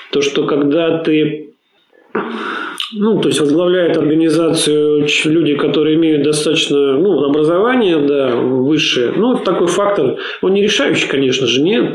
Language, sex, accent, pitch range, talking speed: Russian, male, native, 145-175 Hz, 130 wpm